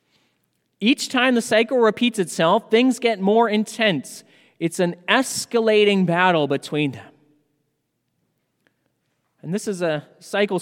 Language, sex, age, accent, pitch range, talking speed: English, male, 30-49, American, 150-205 Hz, 120 wpm